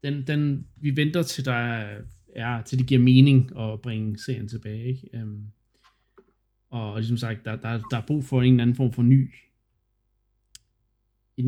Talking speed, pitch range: 165 wpm, 110-130 Hz